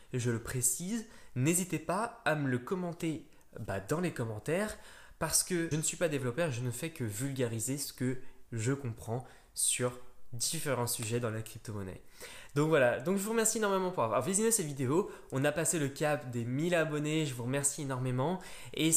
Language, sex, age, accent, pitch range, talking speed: French, male, 20-39, French, 125-170 Hz, 195 wpm